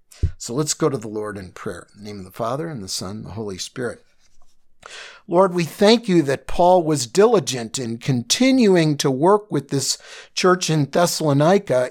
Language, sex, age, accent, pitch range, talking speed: English, male, 50-69, American, 110-155 Hz, 190 wpm